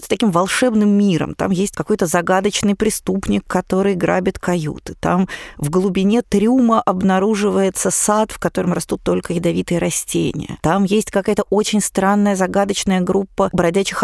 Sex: female